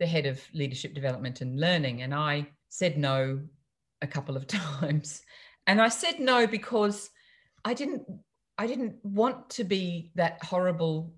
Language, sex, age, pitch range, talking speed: English, female, 40-59, 140-180 Hz, 150 wpm